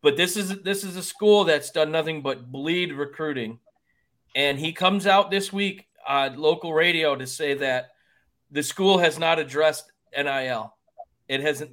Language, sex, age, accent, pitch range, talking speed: English, male, 40-59, American, 135-185 Hz, 170 wpm